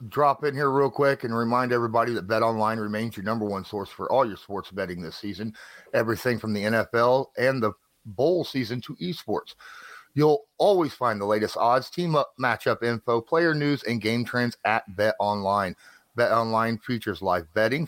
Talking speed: 190 wpm